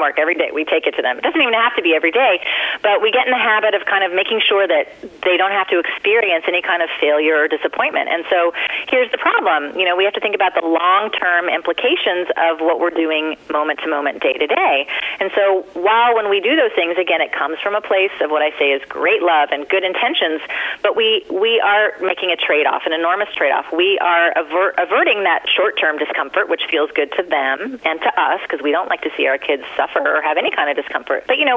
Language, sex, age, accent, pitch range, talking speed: English, female, 30-49, American, 170-250 Hz, 245 wpm